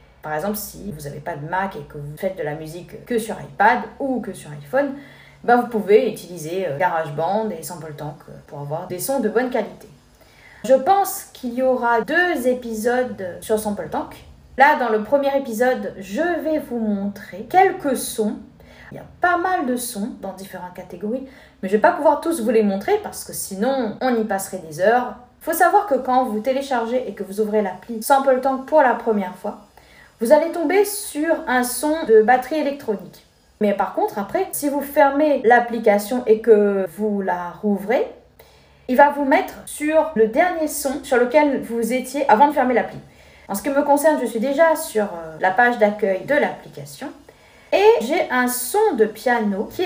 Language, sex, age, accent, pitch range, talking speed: French, female, 40-59, French, 200-280 Hz, 195 wpm